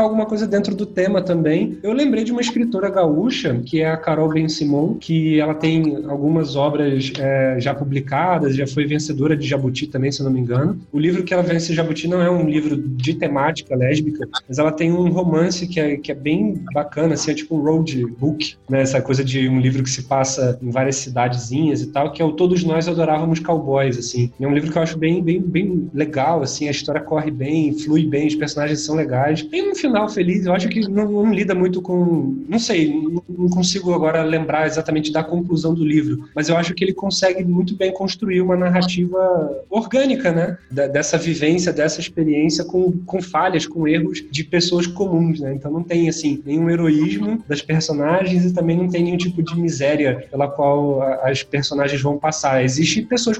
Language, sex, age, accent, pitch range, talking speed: Portuguese, male, 20-39, Brazilian, 145-175 Hz, 210 wpm